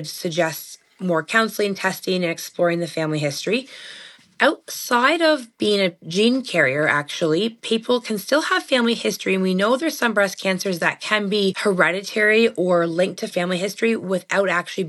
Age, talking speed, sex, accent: 20-39, 160 wpm, female, American